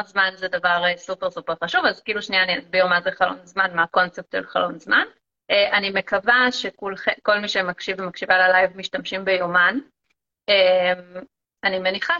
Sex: female